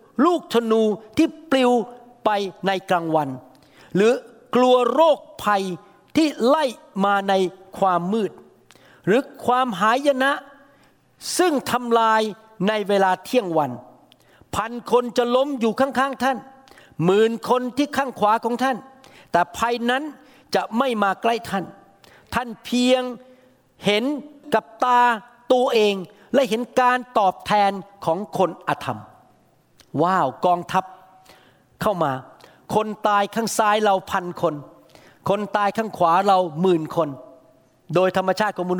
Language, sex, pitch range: Thai, male, 175-235 Hz